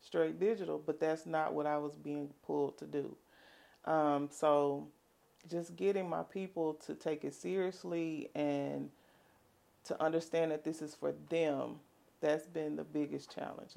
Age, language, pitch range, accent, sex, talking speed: 30-49, English, 145-165 Hz, American, female, 155 wpm